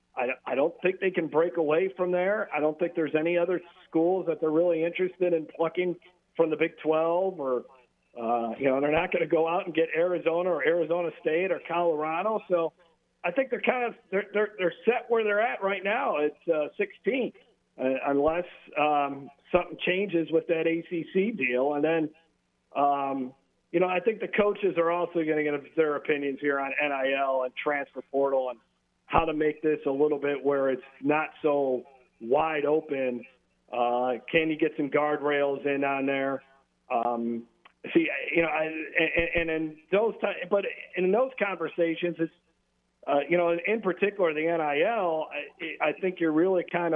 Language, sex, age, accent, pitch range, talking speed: English, male, 50-69, American, 140-175 Hz, 180 wpm